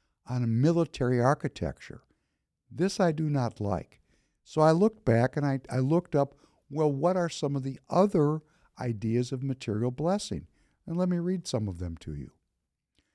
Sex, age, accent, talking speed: male, 60-79, American, 175 wpm